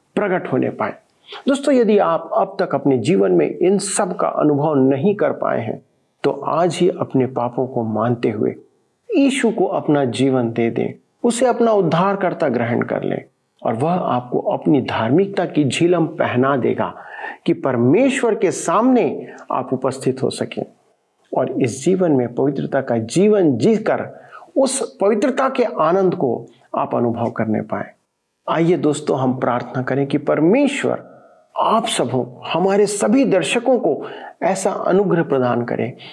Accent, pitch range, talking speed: native, 130-205 Hz, 150 wpm